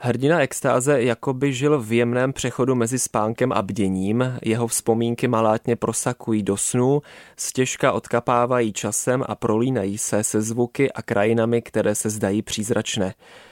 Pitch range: 105-120 Hz